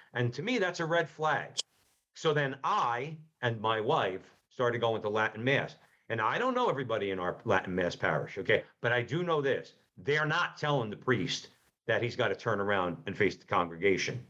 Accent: American